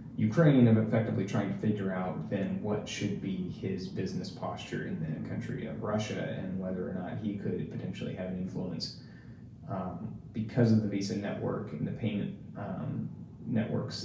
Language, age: English, 20-39